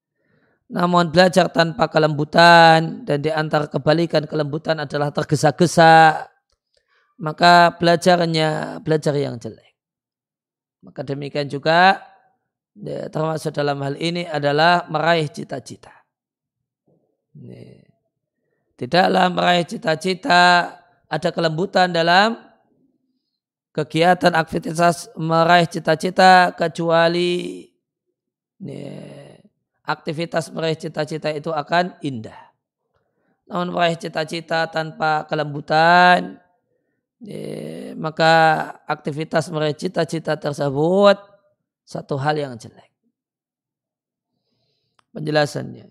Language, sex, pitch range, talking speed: Indonesian, male, 155-175 Hz, 80 wpm